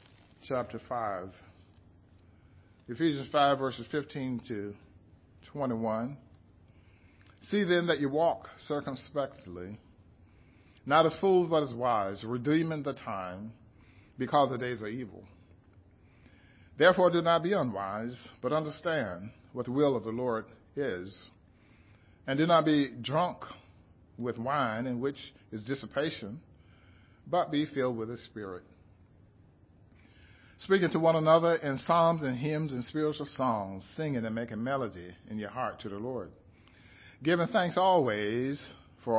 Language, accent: English, American